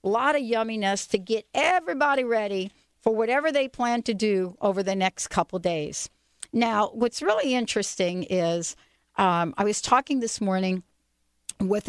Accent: American